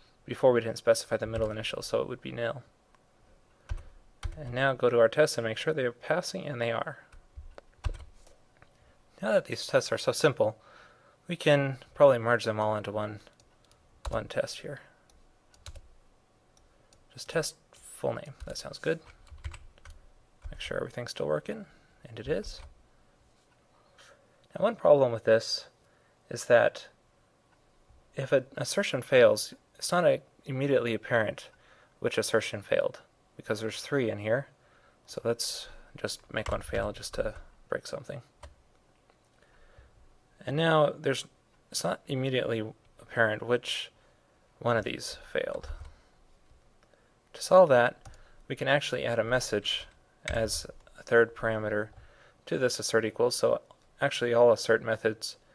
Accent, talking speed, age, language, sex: American, 140 wpm, 20-39, English, male